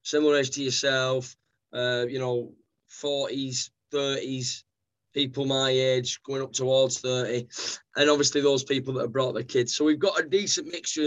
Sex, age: male, 20-39